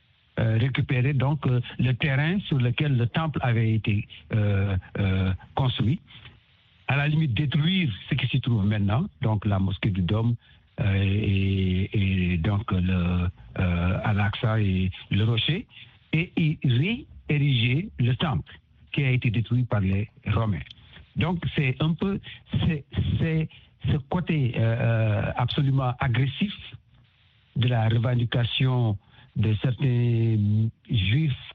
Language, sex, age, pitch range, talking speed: French, male, 60-79, 110-135 Hz, 130 wpm